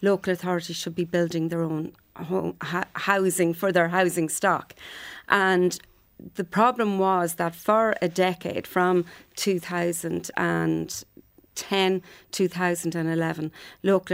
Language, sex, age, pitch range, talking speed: English, female, 40-59, 175-195 Hz, 140 wpm